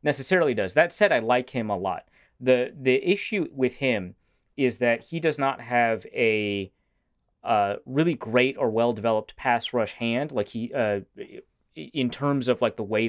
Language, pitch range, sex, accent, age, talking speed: English, 105-130 Hz, male, American, 30-49, 175 wpm